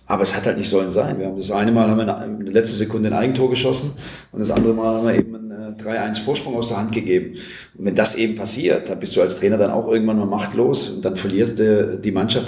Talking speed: 270 wpm